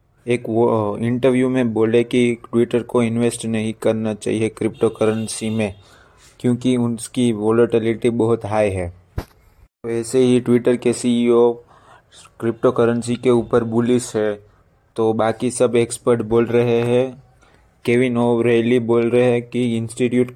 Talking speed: 135 wpm